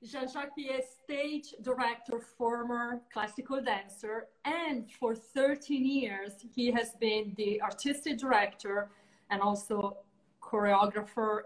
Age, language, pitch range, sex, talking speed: 30-49, Italian, 205-245 Hz, female, 105 wpm